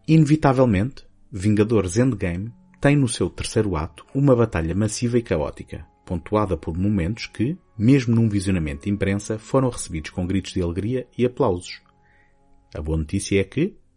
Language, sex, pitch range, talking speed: Portuguese, male, 95-120 Hz, 150 wpm